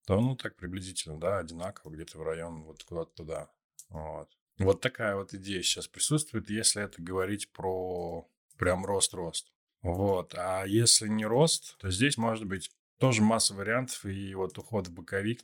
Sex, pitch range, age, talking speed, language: male, 85-105 Hz, 20-39, 165 wpm, Russian